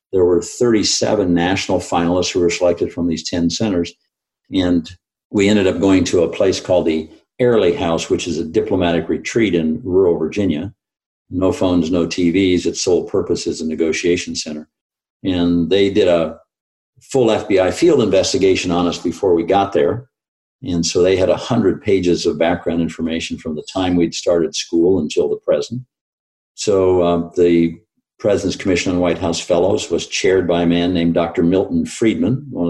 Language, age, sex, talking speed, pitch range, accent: English, 50-69, male, 175 wpm, 85-100 Hz, American